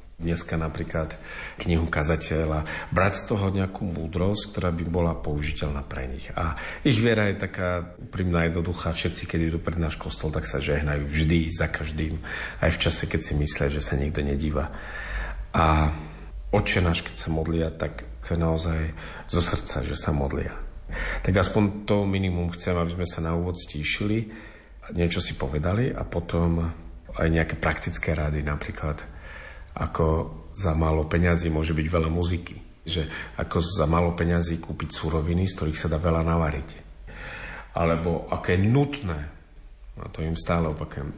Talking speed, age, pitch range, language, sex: 160 wpm, 40-59, 80-90 Hz, Slovak, male